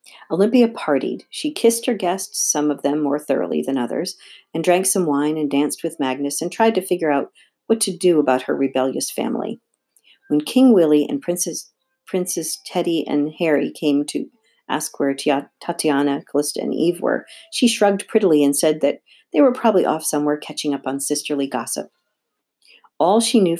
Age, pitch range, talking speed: 50-69, 145-195 Hz, 180 wpm